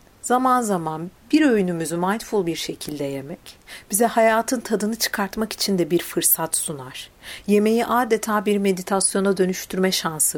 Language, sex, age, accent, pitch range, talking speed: Turkish, female, 50-69, native, 175-230 Hz, 135 wpm